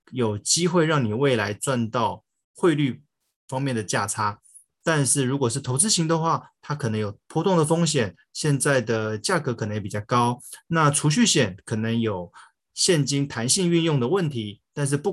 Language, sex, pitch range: Chinese, male, 115-150 Hz